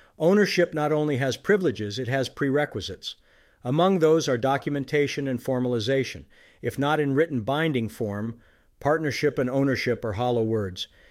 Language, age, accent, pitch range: English, 50-69, American, 115-145 Hz